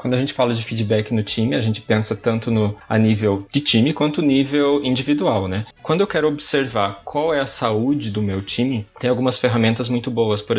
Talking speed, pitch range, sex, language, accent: 215 wpm, 105-125 Hz, male, Portuguese, Brazilian